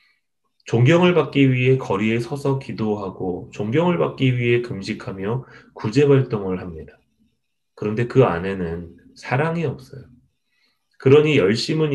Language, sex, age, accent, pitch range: Korean, male, 30-49, native, 105-135 Hz